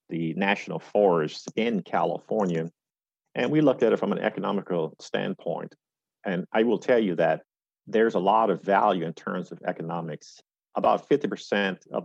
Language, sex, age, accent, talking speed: English, male, 50-69, American, 160 wpm